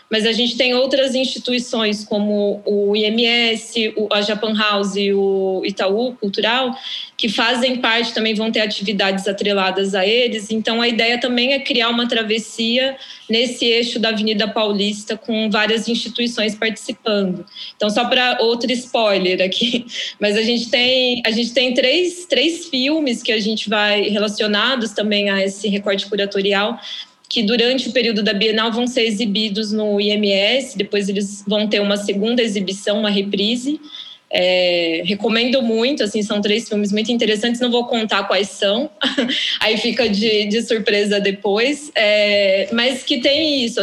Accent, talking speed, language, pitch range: Brazilian, 150 wpm, Portuguese, 205-245 Hz